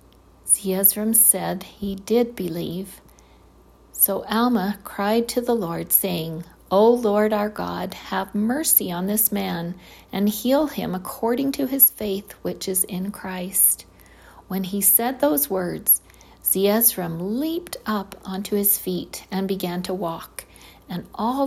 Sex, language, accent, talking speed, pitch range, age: female, English, American, 135 wpm, 170-215 Hz, 50-69